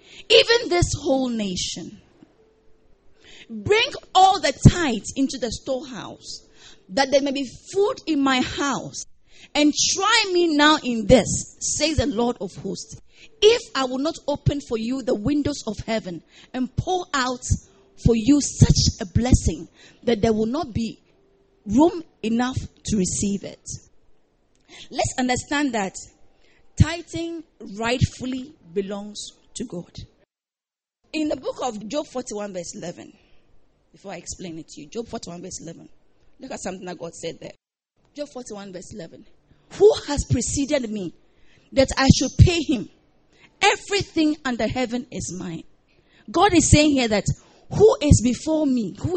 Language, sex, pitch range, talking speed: English, female, 220-305 Hz, 150 wpm